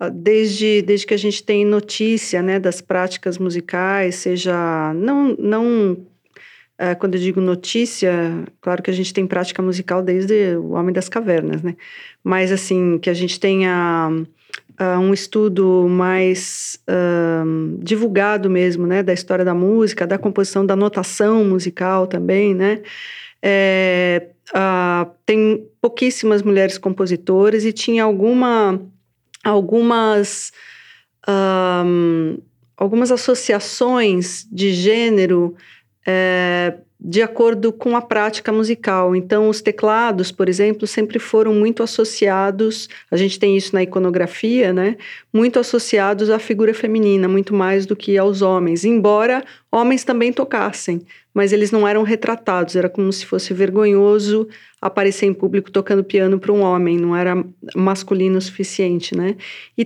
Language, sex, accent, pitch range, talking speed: Portuguese, female, Brazilian, 185-215 Hz, 130 wpm